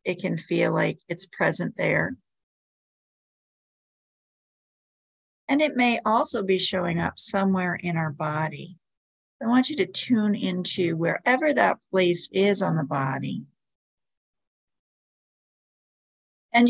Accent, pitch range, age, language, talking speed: American, 170-210 Hz, 50-69, English, 115 wpm